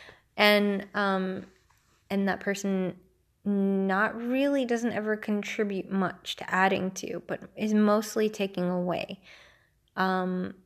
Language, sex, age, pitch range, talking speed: English, female, 20-39, 185-210 Hz, 115 wpm